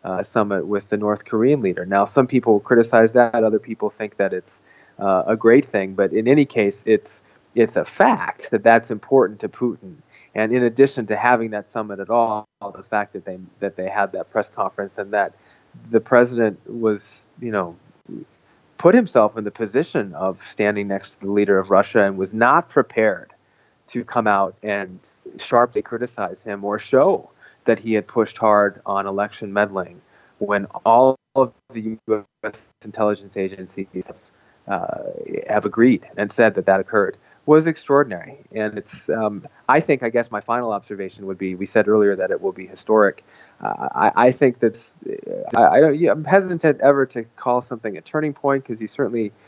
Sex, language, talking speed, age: male, English, 185 wpm, 30-49